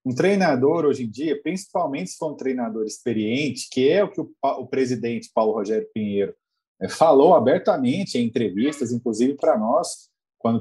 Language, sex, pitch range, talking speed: Portuguese, male, 110-160 Hz, 170 wpm